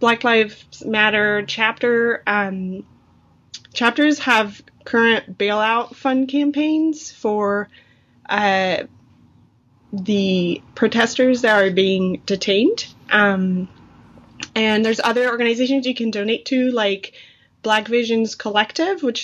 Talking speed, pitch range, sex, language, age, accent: 105 wpm, 200-235 Hz, female, English, 20-39, American